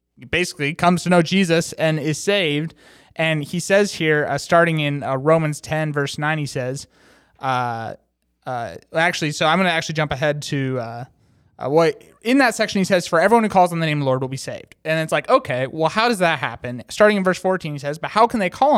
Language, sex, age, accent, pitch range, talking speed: English, male, 20-39, American, 140-180 Hz, 235 wpm